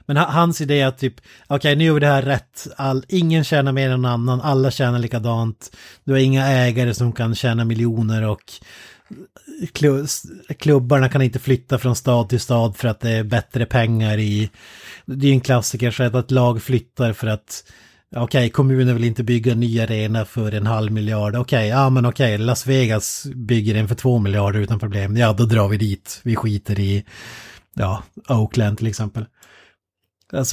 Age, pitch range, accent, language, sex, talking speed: 30-49, 110-135 Hz, native, Swedish, male, 195 wpm